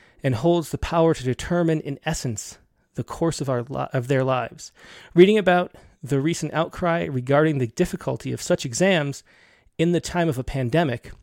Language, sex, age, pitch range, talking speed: English, male, 30-49, 130-170 Hz, 175 wpm